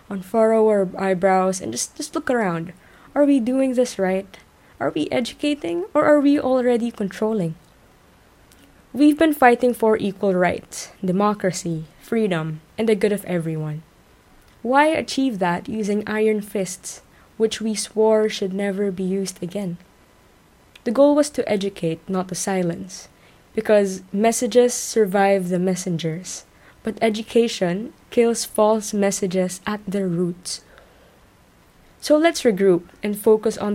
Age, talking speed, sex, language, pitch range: 20-39, 135 wpm, female, English, 185-225 Hz